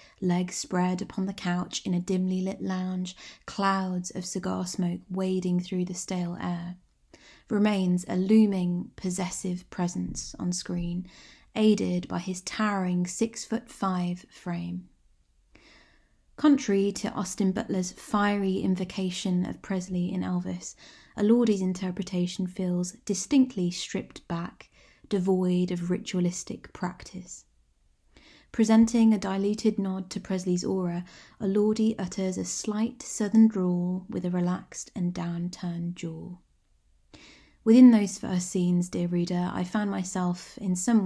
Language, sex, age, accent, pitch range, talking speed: English, female, 20-39, British, 180-205 Hz, 120 wpm